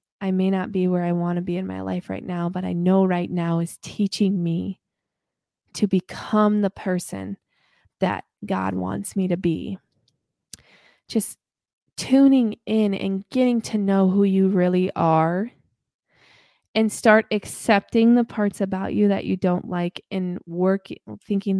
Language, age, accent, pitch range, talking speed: English, 20-39, American, 185-230 Hz, 155 wpm